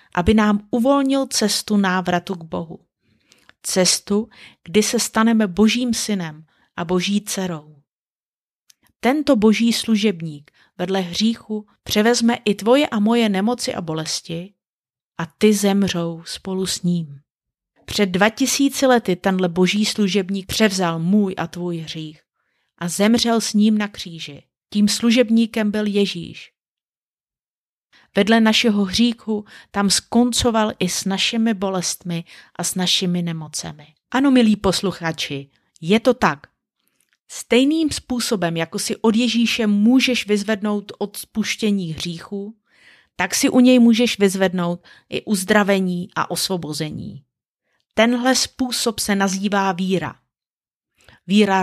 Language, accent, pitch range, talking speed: Czech, native, 180-230 Hz, 120 wpm